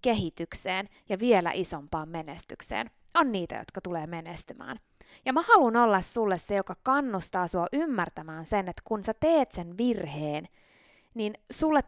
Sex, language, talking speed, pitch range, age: female, Finnish, 145 wpm, 185-265 Hz, 20-39